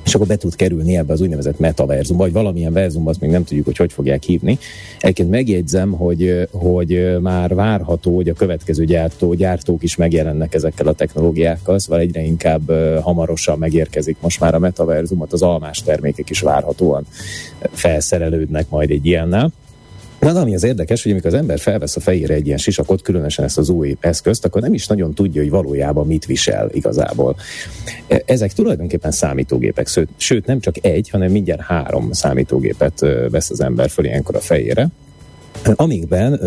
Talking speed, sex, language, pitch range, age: 165 wpm, male, Hungarian, 75-95 Hz, 30-49